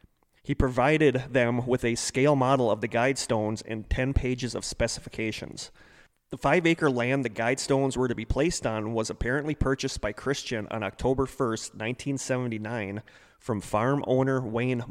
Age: 30-49